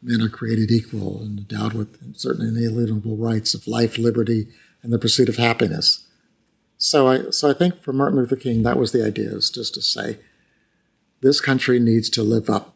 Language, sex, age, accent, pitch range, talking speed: English, male, 50-69, American, 115-140 Hz, 195 wpm